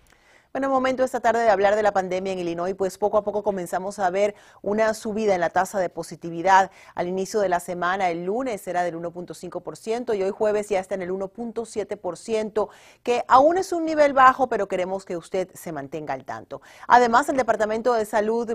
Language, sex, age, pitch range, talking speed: Spanish, female, 40-59, 180-225 Hz, 200 wpm